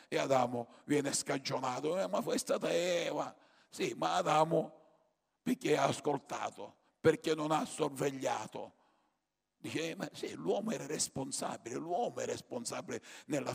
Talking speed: 135 wpm